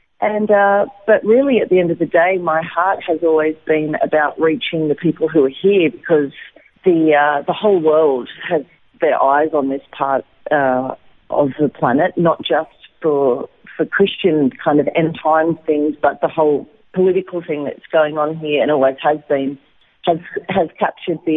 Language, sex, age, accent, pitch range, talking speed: English, female, 40-59, Australian, 145-165 Hz, 185 wpm